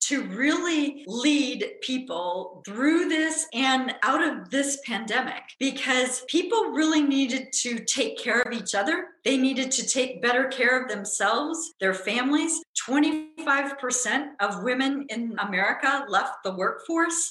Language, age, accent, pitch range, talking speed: English, 40-59, American, 190-280 Hz, 135 wpm